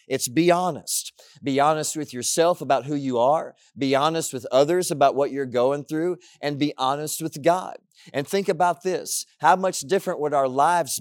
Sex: male